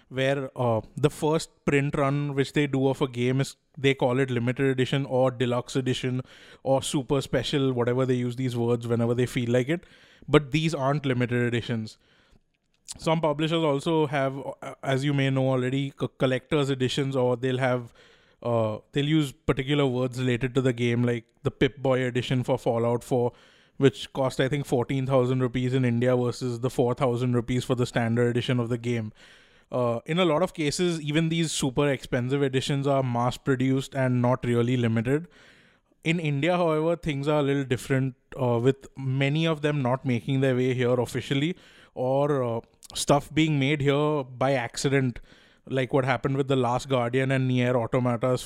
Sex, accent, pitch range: male, Indian, 125-140 Hz